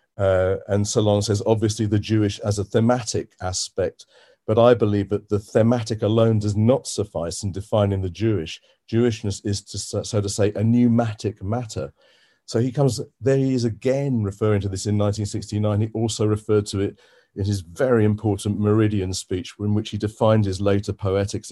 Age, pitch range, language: 40-59, 100-115 Hz, English